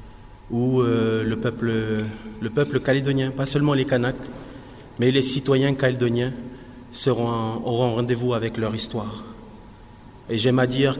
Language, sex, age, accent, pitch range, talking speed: French, male, 30-49, French, 120-135 Hz, 135 wpm